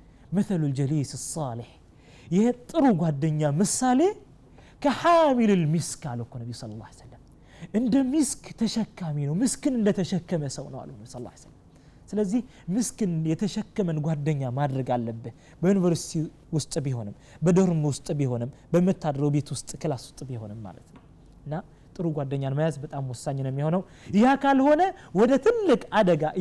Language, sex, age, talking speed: Amharic, male, 30-49, 100 wpm